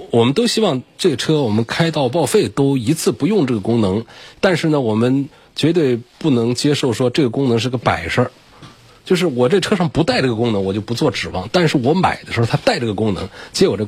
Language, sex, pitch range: Chinese, male, 100-130 Hz